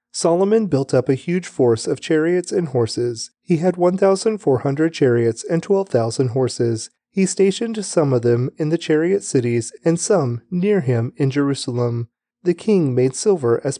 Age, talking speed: 30-49, 180 wpm